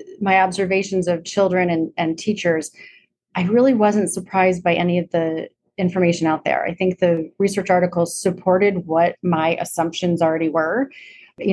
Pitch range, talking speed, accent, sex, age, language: 170-185 Hz, 155 wpm, American, female, 30-49, English